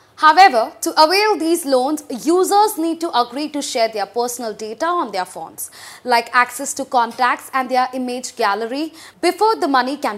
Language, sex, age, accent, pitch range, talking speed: English, female, 20-39, Indian, 245-335 Hz, 170 wpm